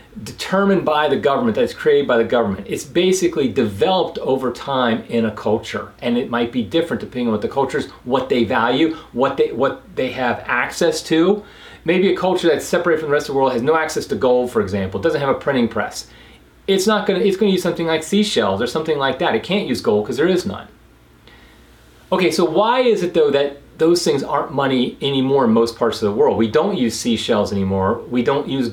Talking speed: 230 wpm